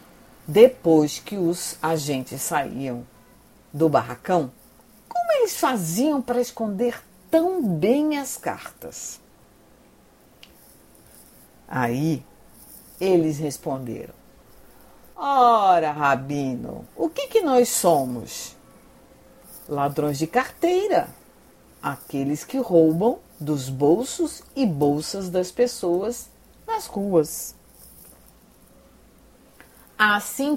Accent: Brazilian